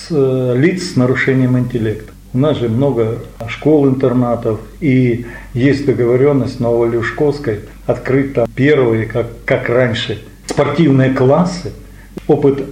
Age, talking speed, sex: 50-69, 120 wpm, male